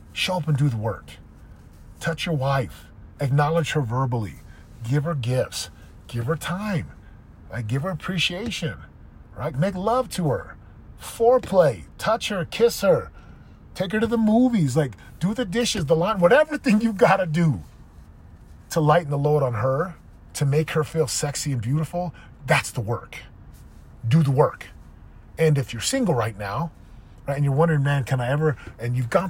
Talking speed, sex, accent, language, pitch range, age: 170 wpm, male, American, English, 115-165 Hz, 30-49